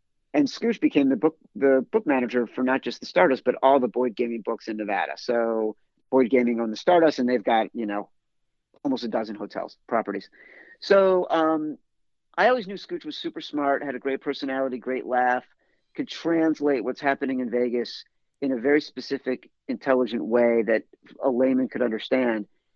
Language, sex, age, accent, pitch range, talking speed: English, male, 50-69, American, 120-145 Hz, 180 wpm